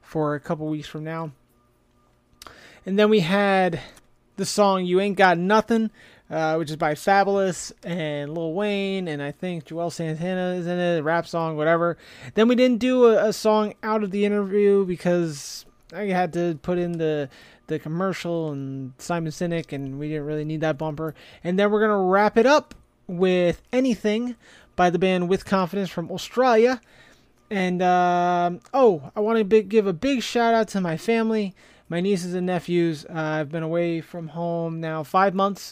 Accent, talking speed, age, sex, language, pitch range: American, 185 wpm, 30-49, male, English, 155-200 Hz